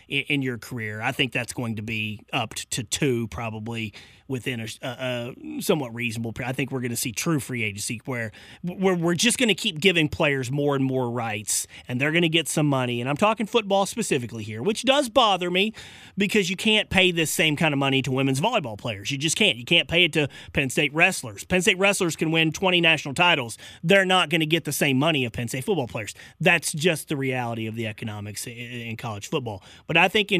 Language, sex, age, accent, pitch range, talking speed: English, male, 30-49, American, 125-180 Hz, 235 wpm